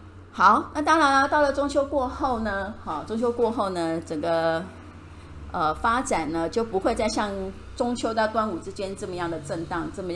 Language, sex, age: Chinese, female, 30-49